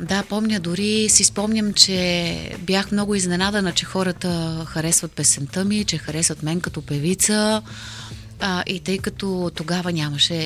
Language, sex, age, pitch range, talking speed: Bulgarian, female, 30-49, 165-215 Hz, 145 wpm